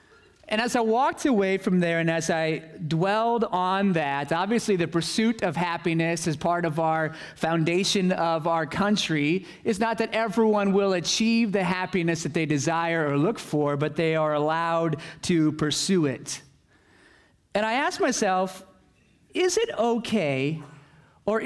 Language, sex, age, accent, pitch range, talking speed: English, male, 40-59, American, 160-200 Hz, 155 wpm